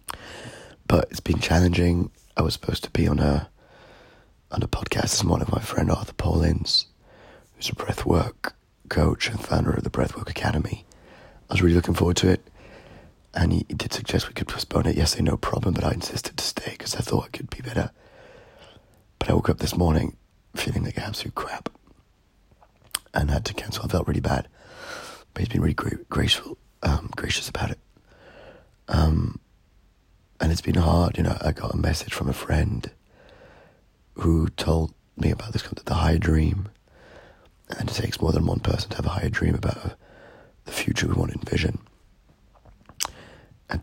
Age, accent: 30-49, British